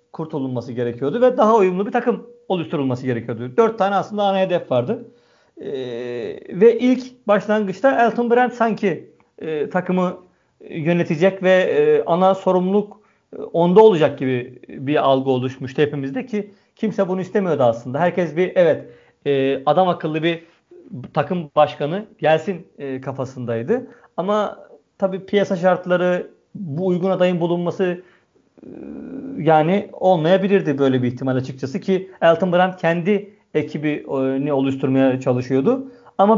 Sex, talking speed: male, 125 wpm